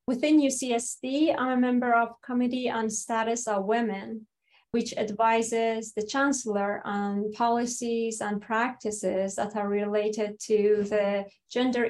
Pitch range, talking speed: 205-235 Hz, 125 wpm